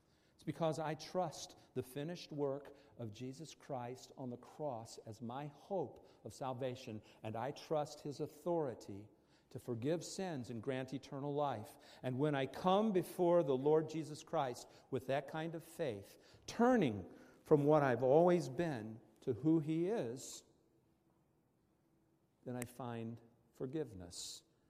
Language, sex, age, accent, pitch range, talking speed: English, male, 50-69, American, 115-155 Hz, 140 wpm